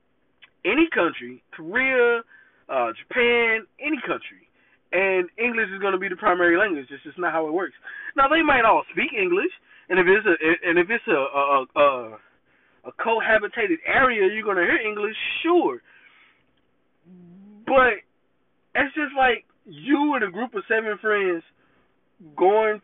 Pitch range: 145-235 Hz